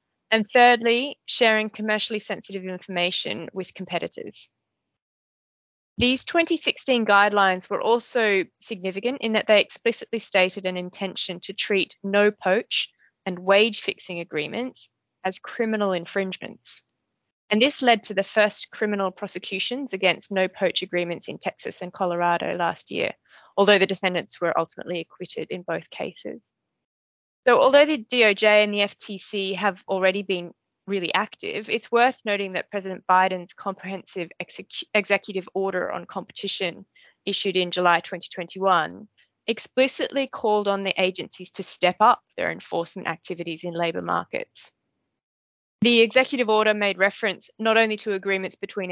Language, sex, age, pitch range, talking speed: English, female, 20-39, 185-220 Hz, 135 wpm